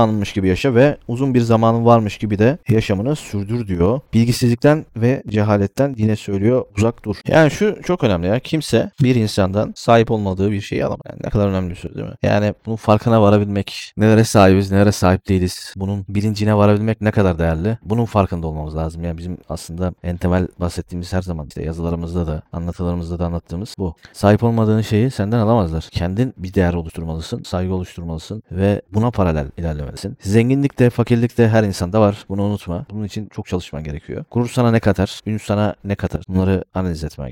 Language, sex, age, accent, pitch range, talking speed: Turkish, male, 30-49, native, 90-115 Hz, 180 wpm